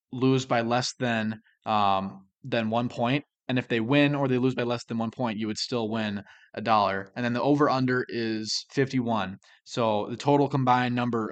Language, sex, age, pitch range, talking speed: English, male, 20-39, 105-130 Hz, 200 wpm